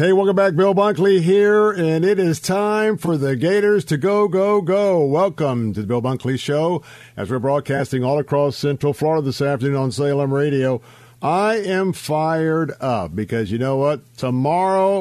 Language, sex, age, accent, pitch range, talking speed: English, male, 50-69, American, 135-180 Hz, 175 wpm